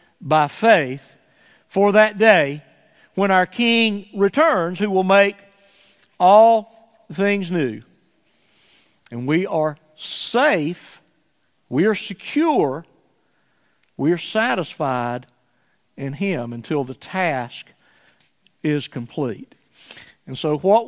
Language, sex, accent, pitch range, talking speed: English, male, American, 150-215 Hz, 100 wpm